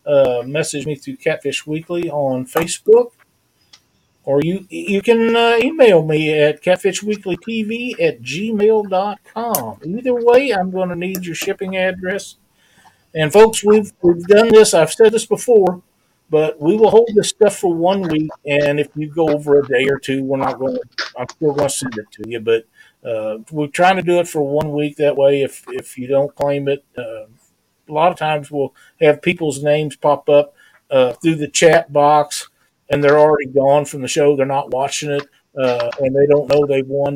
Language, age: English, 50-69